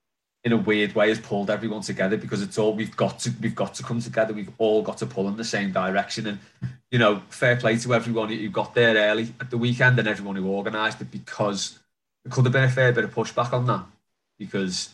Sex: male